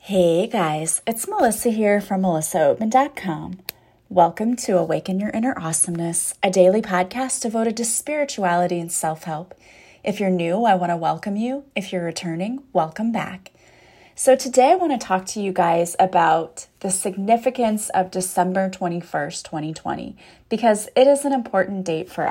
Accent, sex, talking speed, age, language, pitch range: American, female, 155 wpm, 30-49, English, 180-230 Hz